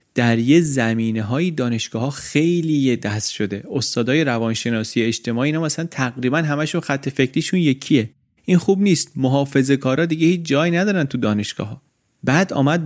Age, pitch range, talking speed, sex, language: 30-49, 115-150 Hz, 160 wpm, male, Persian